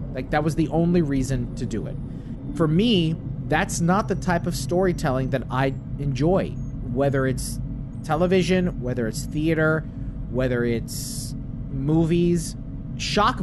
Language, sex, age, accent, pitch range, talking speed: English, male, 30-49, American, 130-160 Hz, 135 wpm